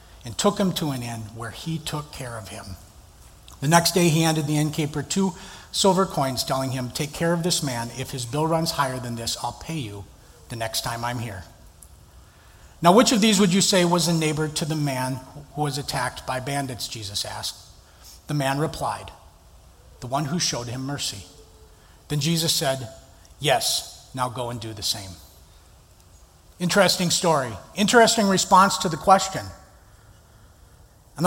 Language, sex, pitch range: English, male, 115-165 Hz